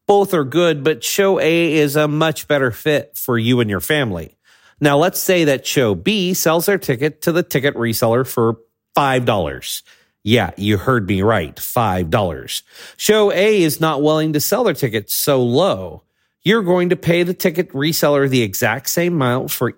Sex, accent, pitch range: male, American, 115-170 Hz